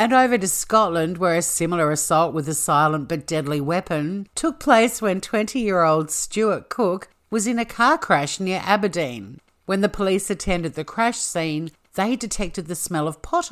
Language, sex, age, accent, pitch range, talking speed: English, female, 50-69, Australian, 155-210 Hz, 180 wpm